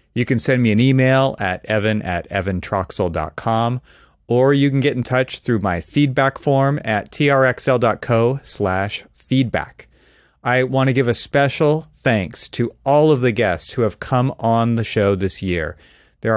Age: 30-49